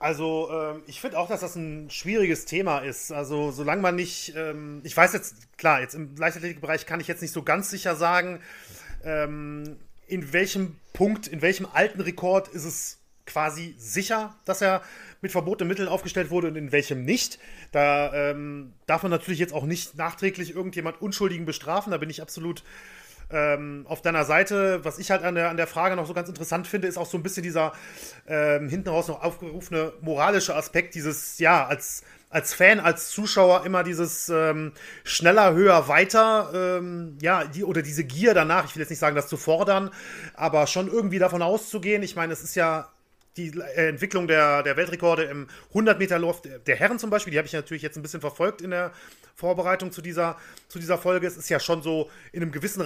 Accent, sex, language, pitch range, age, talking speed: German, male, German, 155-185 Hz, 30-49, 190 wpm